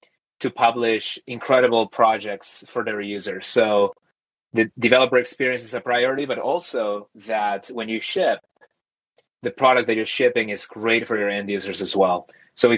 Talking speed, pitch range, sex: 165 wpm, 105-125 Hz, male